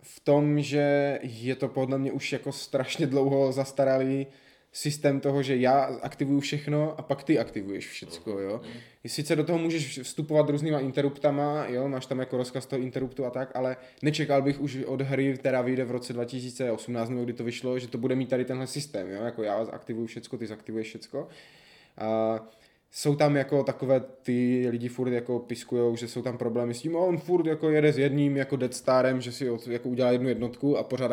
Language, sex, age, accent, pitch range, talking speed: Czech, male, 20-39, native, 120-140 Hz, 195 wpm